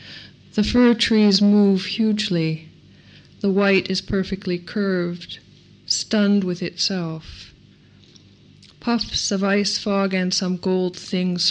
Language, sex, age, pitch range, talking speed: English, female, 50-69, 175-200 Hz, 110 wpm